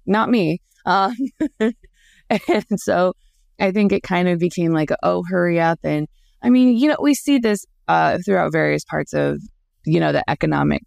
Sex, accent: female, American